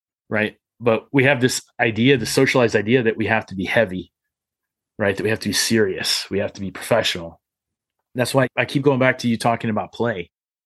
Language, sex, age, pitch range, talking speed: English, male, 30-49, 100-120 Hz, 215 wpm